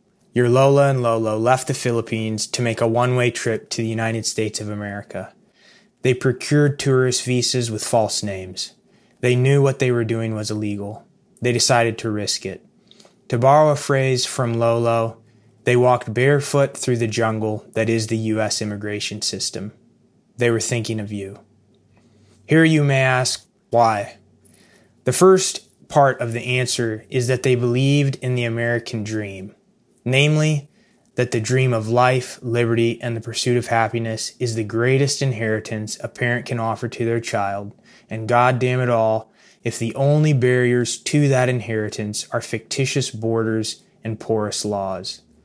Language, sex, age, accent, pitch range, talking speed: English, male, 20-39, American, 110-130 Hz, 160 wpm